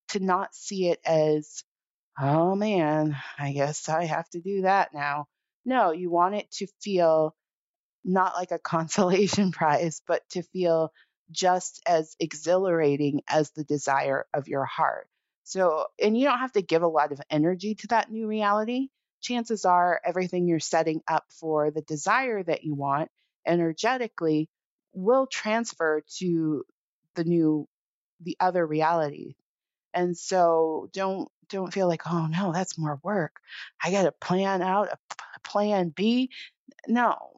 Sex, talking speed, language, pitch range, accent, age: female, 155 wpm, English, 160-205 Hz, American, 30-49